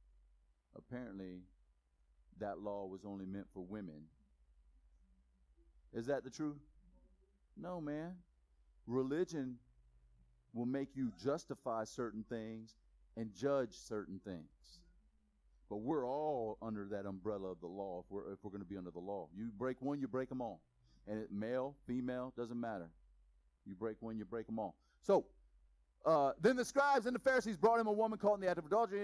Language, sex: Hungarian, male